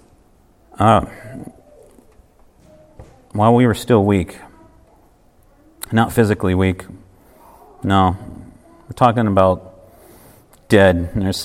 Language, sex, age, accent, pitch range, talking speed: English, male, 50-69, American, 95-120 Hz, 80 wpm